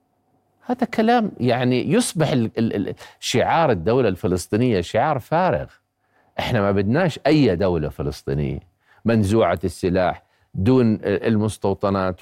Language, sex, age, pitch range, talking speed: Arabic, male, 50-69, 95-130 Hz, 105 wpm